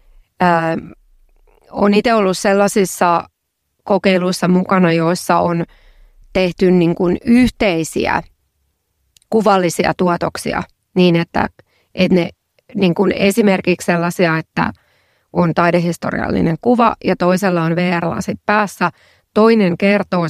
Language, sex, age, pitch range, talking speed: Finnish, female, 30-49, 175-200 Hz, 95 wpm